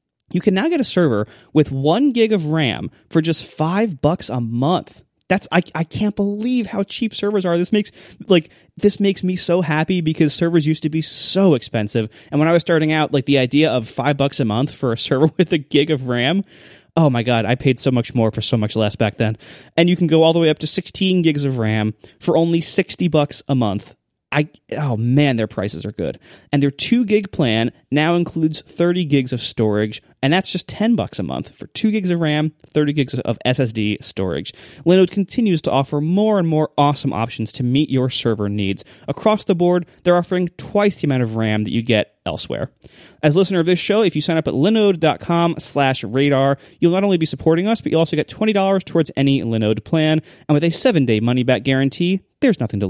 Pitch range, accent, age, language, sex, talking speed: 130-180 Hz, American, 20-39, English, male, 220 wpm